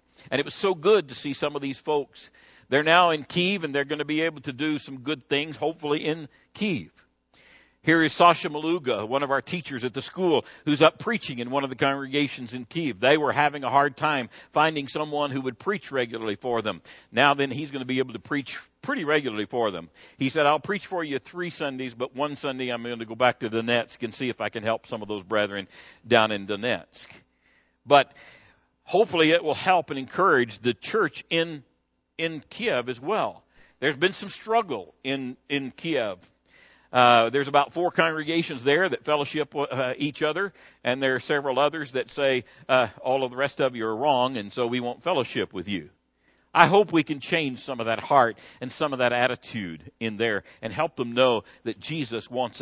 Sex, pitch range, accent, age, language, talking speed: male, 120-155 Hz, American, 60-79, English, 210 wpm